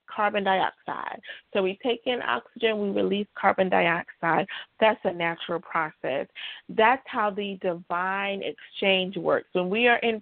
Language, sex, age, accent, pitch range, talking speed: English, female, 30-49, American, 195-235 Hz, 145 wpm